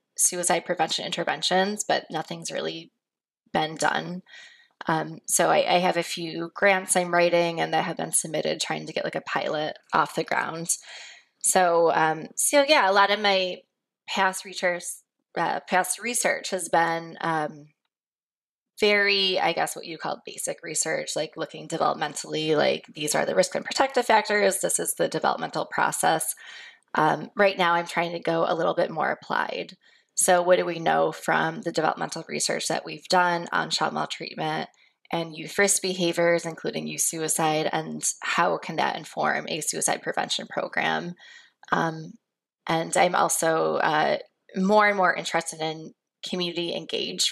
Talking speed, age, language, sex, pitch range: 160 wpm, 20-39, English, female, 165-200 Hz